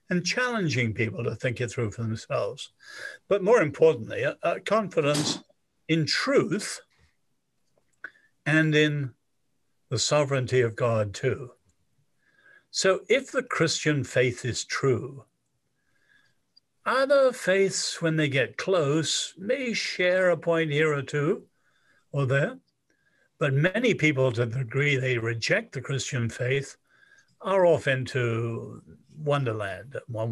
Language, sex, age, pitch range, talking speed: English, male, 60-79, 130-195 Hz, 120 wpm